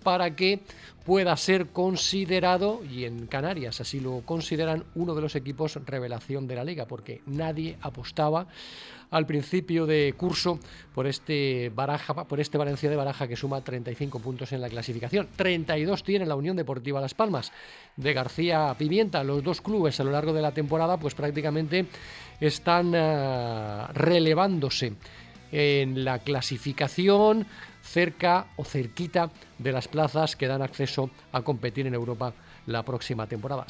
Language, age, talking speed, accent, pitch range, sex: Spanish, 40-59, 150 wpm, Spanish, 130-170 Hz, male